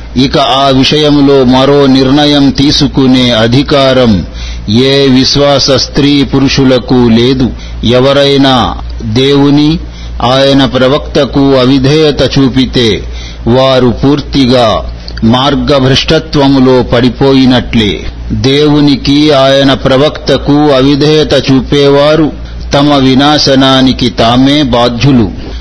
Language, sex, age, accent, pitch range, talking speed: Telugu, male, 50-69, native, 125-145 Hz, 75 wpm